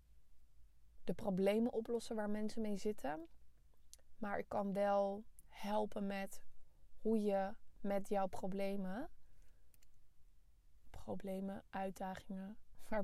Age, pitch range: 20-39, 185-210 Hz